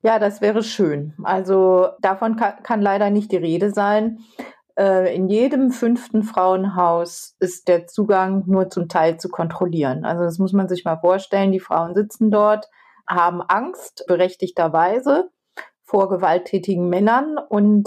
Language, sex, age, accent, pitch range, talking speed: German, female, 30-49, German, 175-210 Hz, 140 wpm